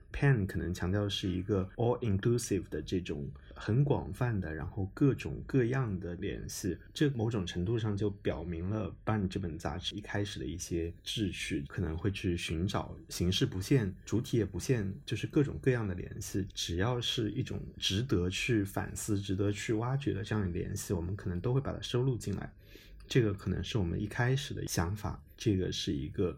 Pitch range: 95-110 Hz